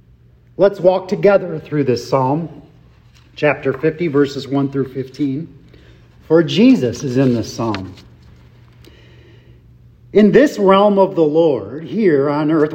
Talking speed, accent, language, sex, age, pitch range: 125 wpm, American, English, male, 40-59, 130-195 Hz